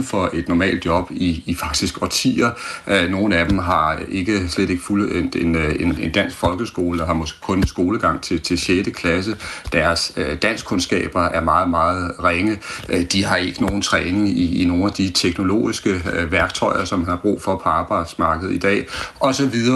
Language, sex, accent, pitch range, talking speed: Danish, male, native, 90-105 Hz, 175 wpm